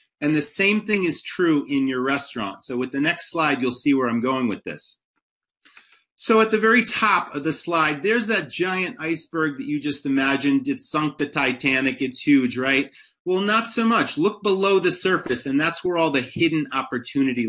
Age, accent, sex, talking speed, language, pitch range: 30-49, American, male, 200 wpm, English, 135-190 Hz